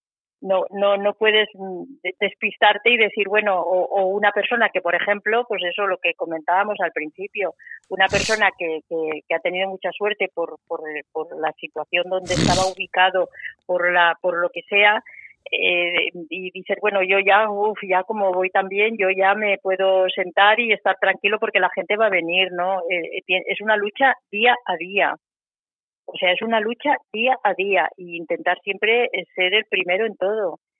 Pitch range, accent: 175-210 Hz, Spanish